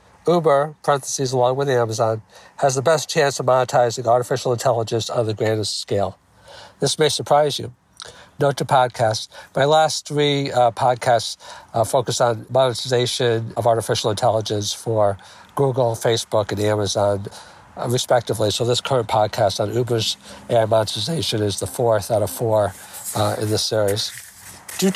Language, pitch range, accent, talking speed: English, 115-155 Hz, American, 150 wpm